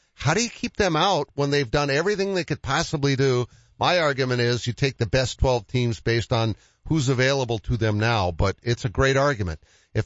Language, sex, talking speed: English, male, 215 wpm